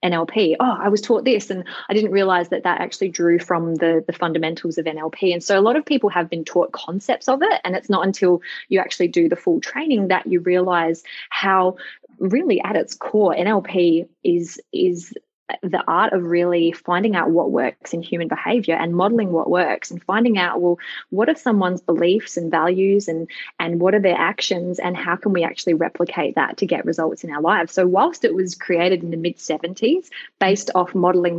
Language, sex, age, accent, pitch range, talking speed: English, female, 20-39, Australian, 165-200 Hz, 210 wpm